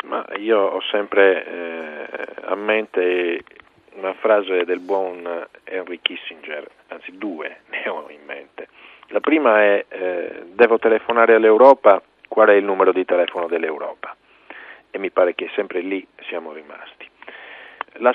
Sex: male